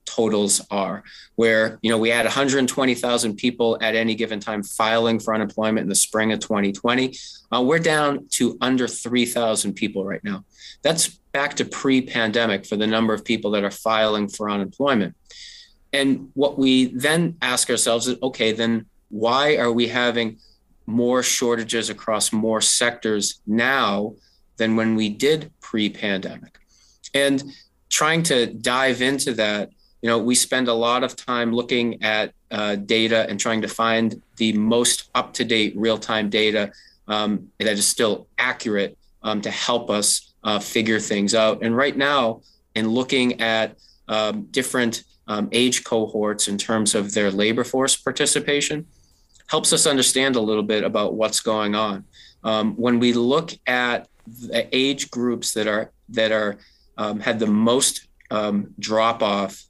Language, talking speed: English, 155 wpm